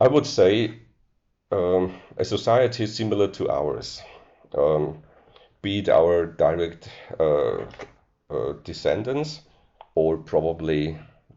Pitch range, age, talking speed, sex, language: 75-100 Hz, 50-69, 100 wpm, male, Danish